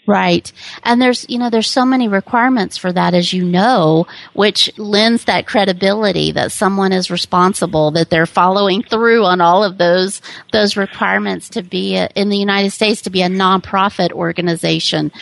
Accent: American